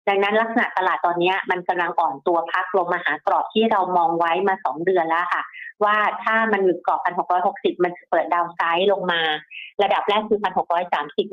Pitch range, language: 175-220 Hz, Thai